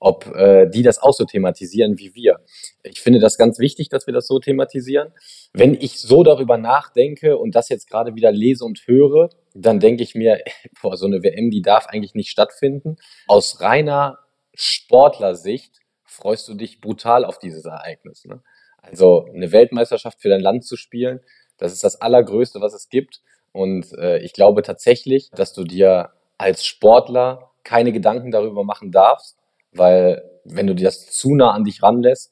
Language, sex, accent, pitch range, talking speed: German, male, German, 105-145 Hz, 175 wpm